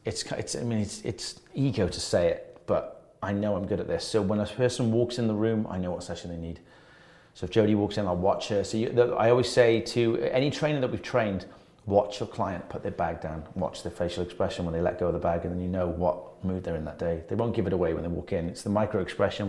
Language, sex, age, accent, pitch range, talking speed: English, male, 30-49, British, 95-120 Hz, 280 wpm